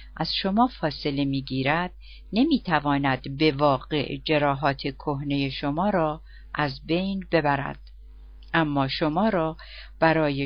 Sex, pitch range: female, 140-180 Hz